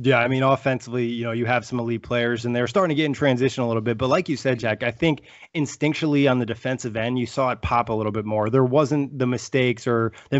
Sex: male